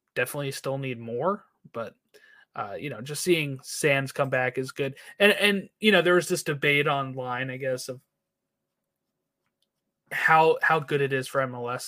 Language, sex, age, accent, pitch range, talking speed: English, male, 30-49, American, 145-205 Hz, 170 wpm